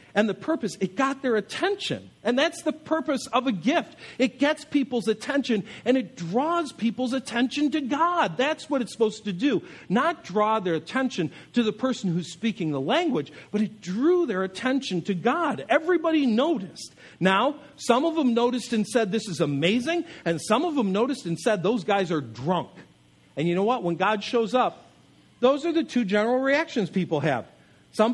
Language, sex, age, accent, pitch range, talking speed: English, male, 50-69, American, 170-260 Hz, 190 wpm